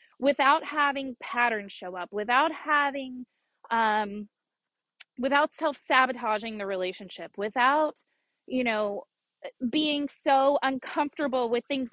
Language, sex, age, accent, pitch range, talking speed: English, female, 20-39, American, 225-295 Hz, 100 wpm